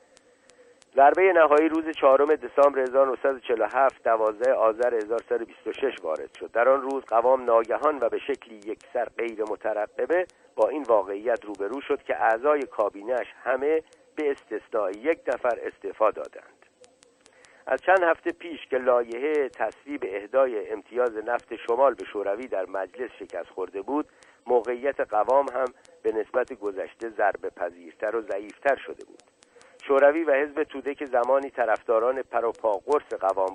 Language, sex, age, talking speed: Persian, male, 50-69, 135 wpm